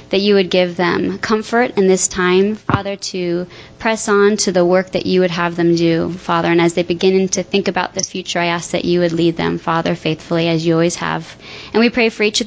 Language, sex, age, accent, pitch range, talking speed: English, female, 20-39, American, 175-200 Hz, 245 wpm